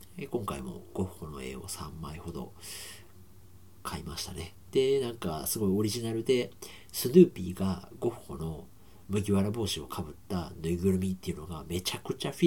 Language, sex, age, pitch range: Japanese, male, 50-69, 85-135 Hz